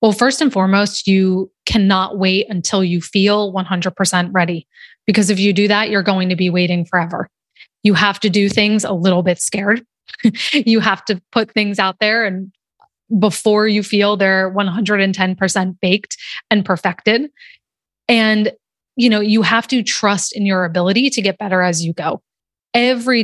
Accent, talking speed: American, 170 wpm